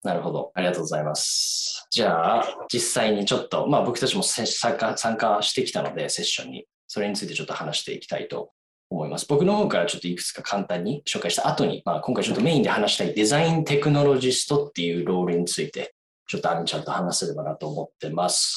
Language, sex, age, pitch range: Japanese, male, 20-39, 95-145 Hz